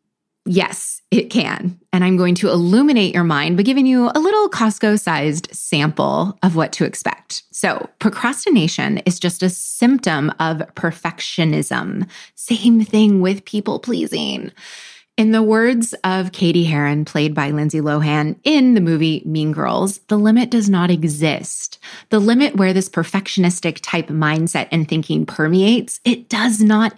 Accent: American